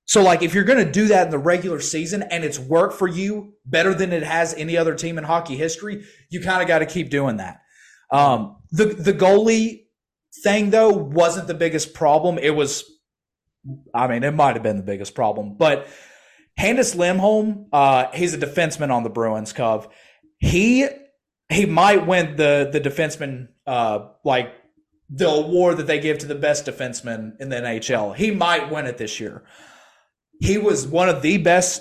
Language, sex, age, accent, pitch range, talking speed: English, male, 30-49, American, 135-175 Hz, 190 wpm